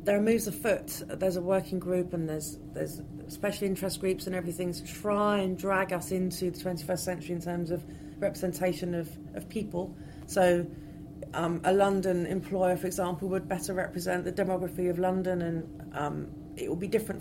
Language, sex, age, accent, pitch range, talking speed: English, female, 40-59, British, 155-190 Hz, 180 wpm